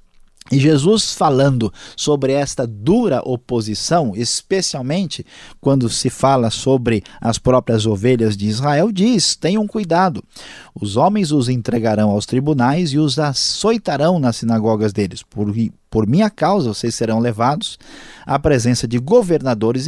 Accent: Brazilian